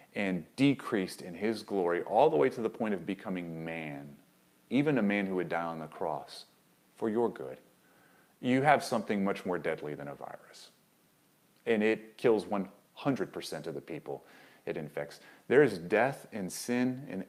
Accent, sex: American, male